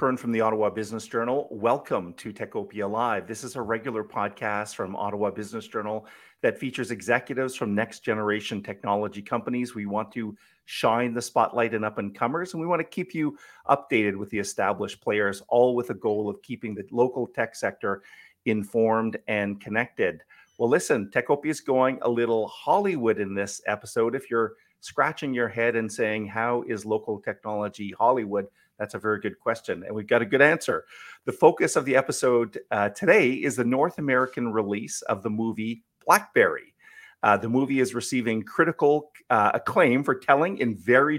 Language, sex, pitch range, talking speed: English, male, 105-125 Hz, 180 wpm